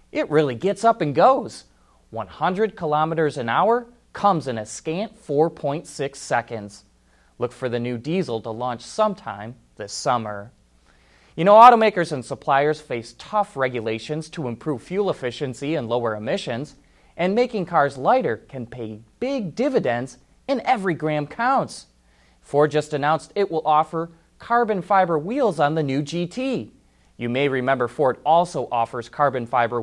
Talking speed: 150 wpm